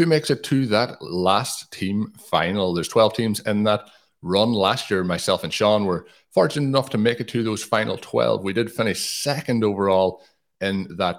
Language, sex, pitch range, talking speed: English, male, 90-115 Hz, 195 wpm